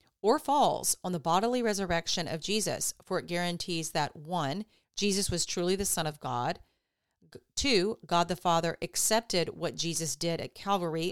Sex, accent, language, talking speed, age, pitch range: female, American, English, 160 wpm, 40-59, 155-195 Hz